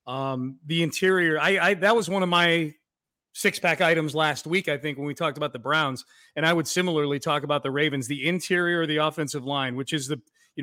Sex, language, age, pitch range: male, English, 30-49, 145-175 Hz